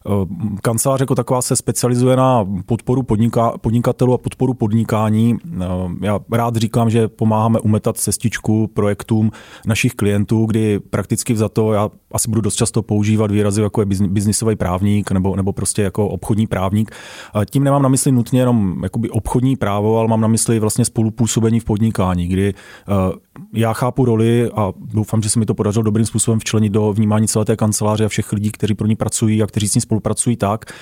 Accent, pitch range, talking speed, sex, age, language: native, 105-115 Hz, 175 wpm, male, 30-49, Czech